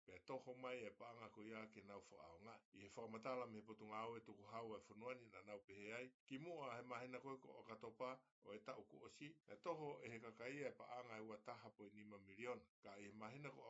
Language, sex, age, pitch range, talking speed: English, male, 60-79, 105-125 Hz, 195 wpm